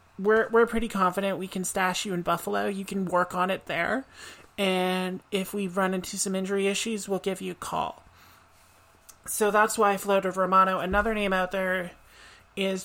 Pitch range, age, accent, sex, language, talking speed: 185-205 Hz, 30-49, American, male, English, 180 wpm